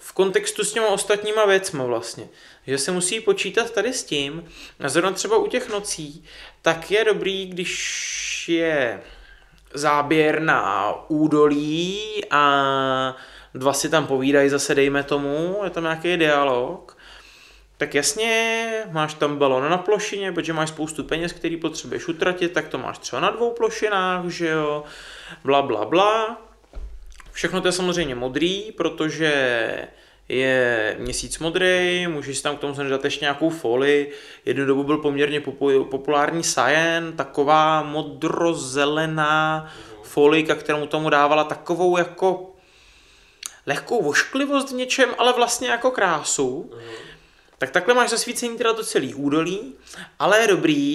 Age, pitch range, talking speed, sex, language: 20-39, 145-200 Hz, 140 wpm, male, Czech